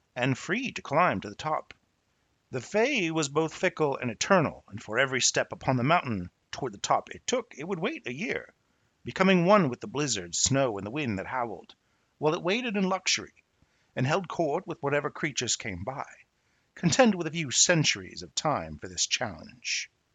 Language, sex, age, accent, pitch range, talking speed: English, male, 50-69, American, 110-165 Hz, 195 wpm